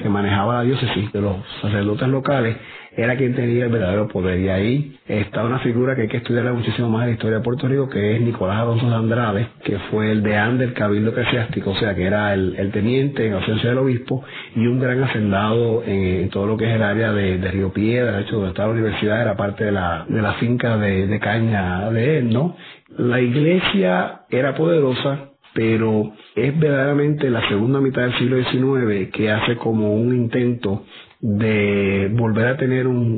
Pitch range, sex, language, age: 105-125 Hz, male, Spanish, 40-59